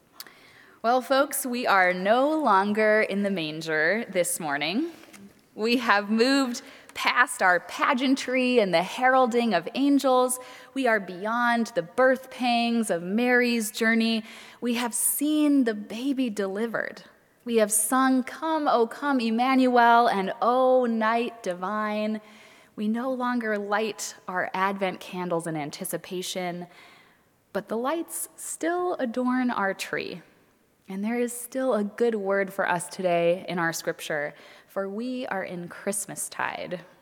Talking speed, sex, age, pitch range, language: 135 wpm, female, 20-39, 190-250 Hz, English